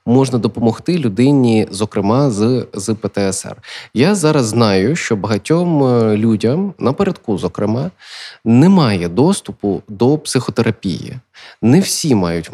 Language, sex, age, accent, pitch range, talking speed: Ukrainian, male, 20-39, native, 110-150 Hz, 105 wpm